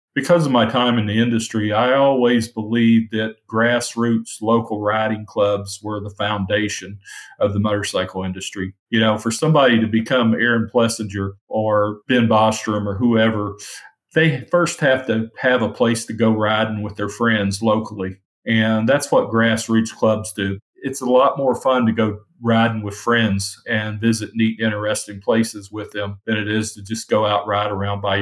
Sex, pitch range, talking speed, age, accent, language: male, 105-120 Hz, 175 wpm, 40-59, American, English